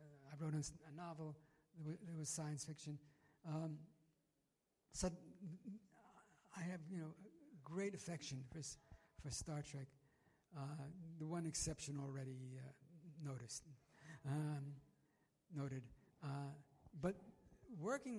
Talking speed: 110 wpm